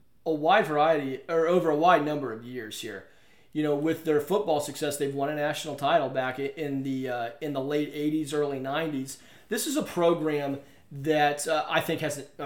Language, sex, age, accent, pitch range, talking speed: English, male, 30-49, American, 135-165 Hz, 200 wpm